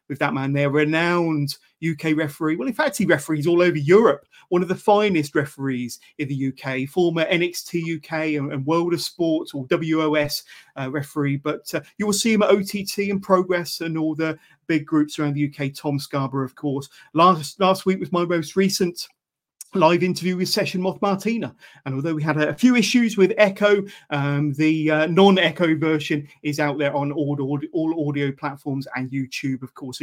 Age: 30-49